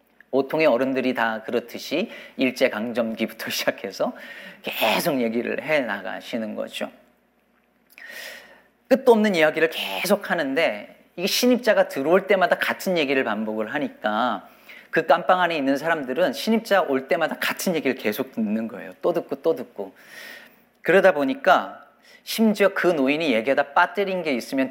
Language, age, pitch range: Korean, 40-59, 140-215 Hz